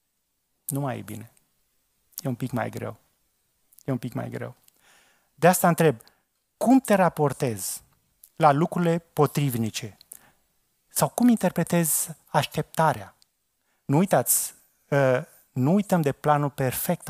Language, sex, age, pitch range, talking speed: Romanian, male, 30-49, 130-175 Hz, 120 wpm